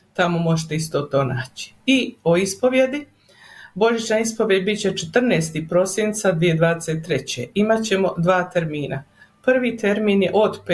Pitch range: 165-205 Hz